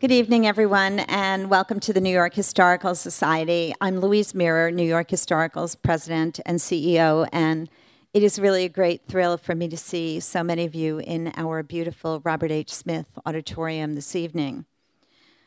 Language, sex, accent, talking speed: English, female, American, 170 wpm